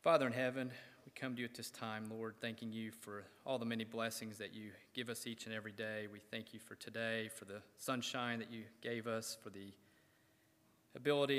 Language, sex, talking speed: English, male, 215 wpm